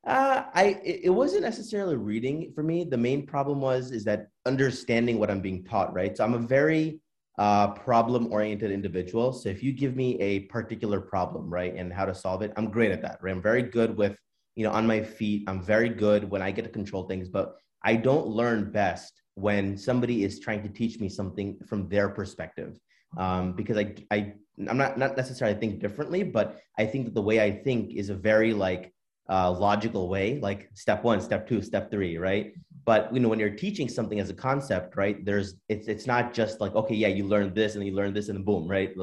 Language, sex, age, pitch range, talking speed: English, male, 30-49, 100-115 Hz, 220 wpm